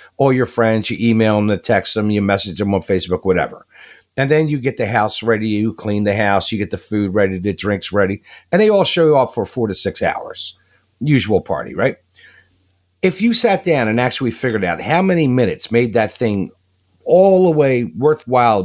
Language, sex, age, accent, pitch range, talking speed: English, male, 50-69, American, 110-160 Hz, 210 wpm